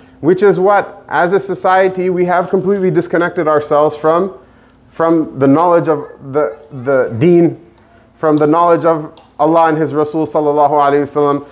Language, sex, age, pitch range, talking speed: English, male, 30-49, 145-185 Hz, 150 wpm